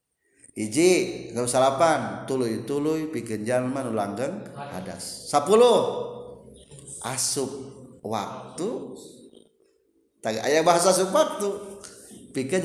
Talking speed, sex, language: 85 wpm, male, Indonesian